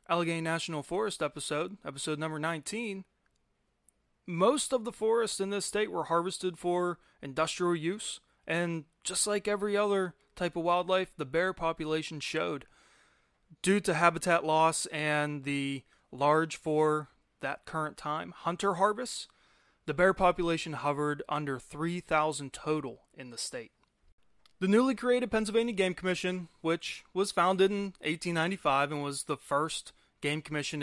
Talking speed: 140 wpm